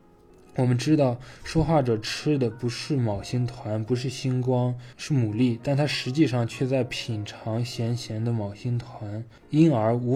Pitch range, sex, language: 110-130 Hz, male, Chinese